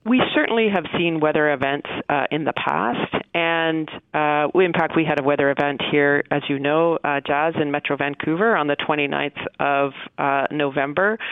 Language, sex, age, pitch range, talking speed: English, female, 40-59, 140-170 Hz, 185 wpm